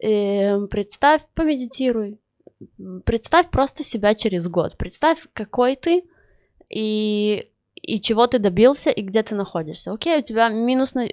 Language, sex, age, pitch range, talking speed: Russian, female, 20-39, 185-245 Hz, 130 wpm